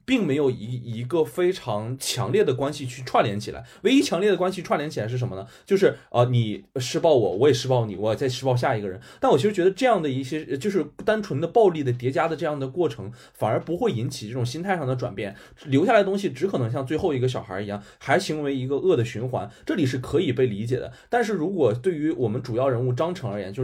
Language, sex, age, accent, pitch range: Chinese, male, 20-39, native, 110-155 Hz